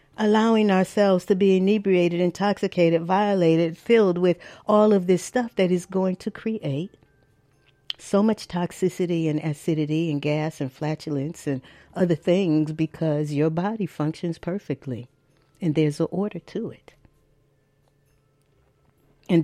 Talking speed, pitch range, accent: 130 wpm, 140-185 Hz, American